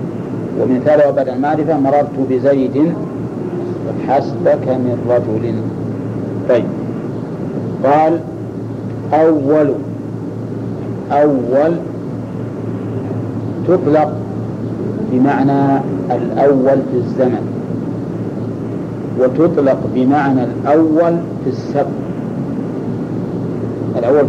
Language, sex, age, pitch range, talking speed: Arabic, male, 50-69, 130-155 Hz, 60 wpm